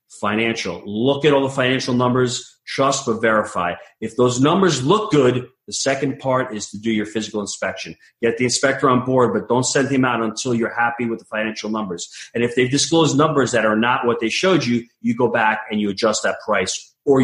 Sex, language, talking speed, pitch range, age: male, English, 215 wpm, 110-135 Hz, 30-49